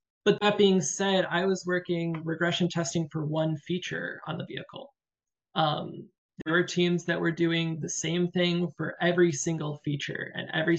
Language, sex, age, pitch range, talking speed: English, male, 20-39, 150-175 Hz, 170 wpm